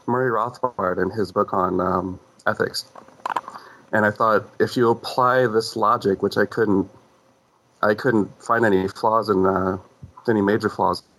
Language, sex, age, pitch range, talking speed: English, male, 30-49, 95-120 Hz, 155 wpm